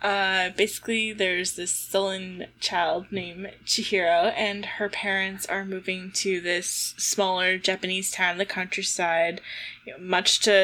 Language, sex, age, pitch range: English, female, 10-29, 185-215 Hz